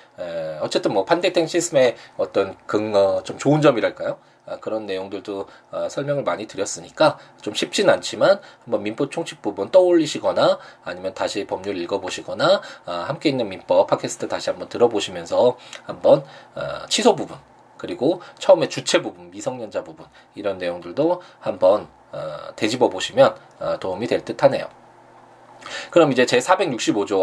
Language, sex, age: Korean, male, 20-39